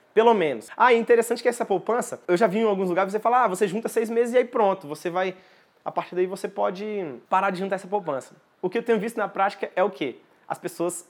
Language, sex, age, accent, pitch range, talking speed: Portuguese, male, 20-39, Brazilian, 175-235 Hz, 260 wpm